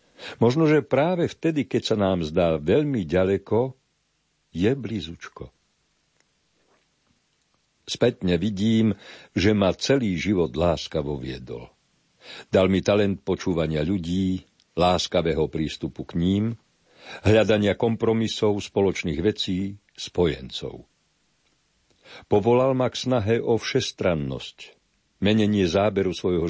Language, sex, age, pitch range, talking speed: Slovak, male, 60-79, 85-110 Hz, 95 wpm